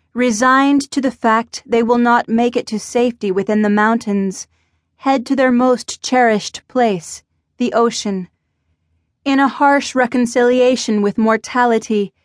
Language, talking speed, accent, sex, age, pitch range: English, 135 wpm, American, female, 30-49, 200-260 Hz